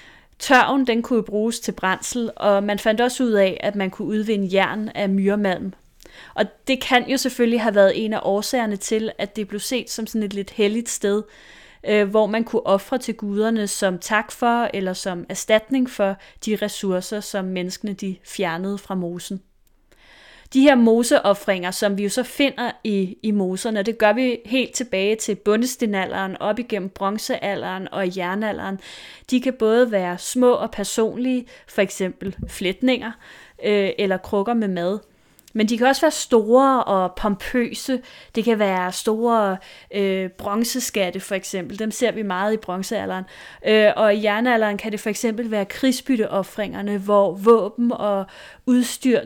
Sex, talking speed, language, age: female, 160 wpm, Danish, 30-49